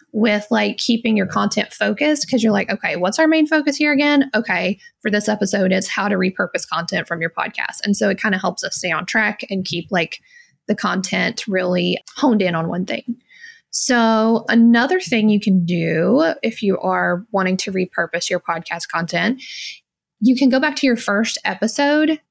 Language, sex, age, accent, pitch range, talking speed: English, female, 20-39, American, 185-240 Hz, 195 wpm